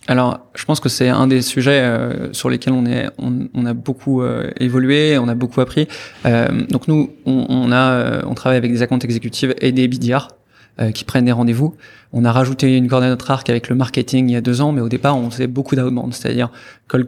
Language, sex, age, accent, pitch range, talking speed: French, male, 20-39, French, 120-135 Hz, 240 wpm